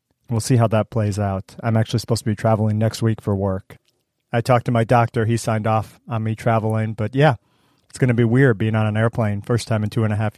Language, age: English, 40-59